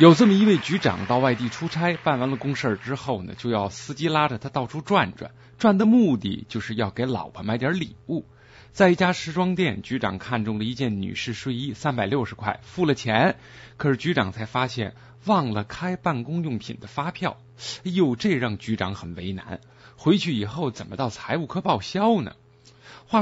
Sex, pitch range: male, 110-175 Hz